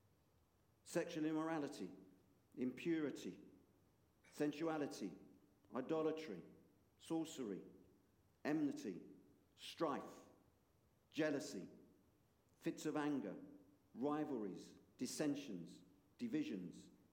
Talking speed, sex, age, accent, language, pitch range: 55 wpm, male, 50-69, British, English, 105-150 Hz